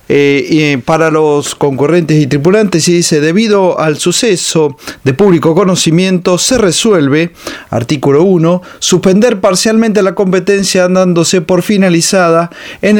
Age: 40-59